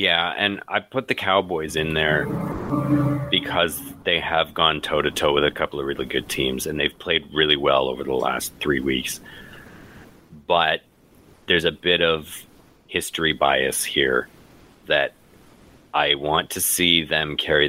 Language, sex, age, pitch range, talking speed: English, male, 30-49, 75-95 Hz, 155 wpm